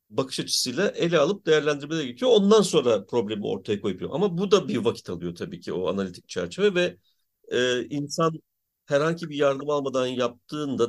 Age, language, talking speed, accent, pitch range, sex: 50-69, Turkish, 165 wpm, native, 120-170 Hz, male